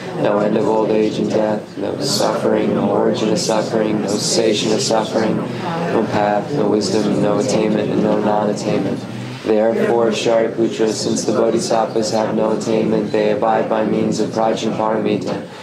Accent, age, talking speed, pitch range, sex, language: American, 20-39, 155 wpm, 110-115 Hz, male, English